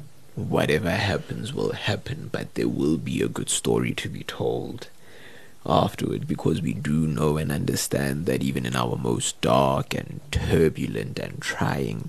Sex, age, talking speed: male, 30-49, 155 wpm